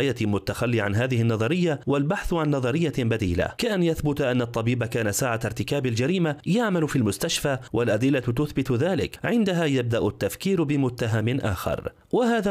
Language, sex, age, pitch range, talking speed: Arabic, male, 30-49, 115-160 Hz, 140 wpm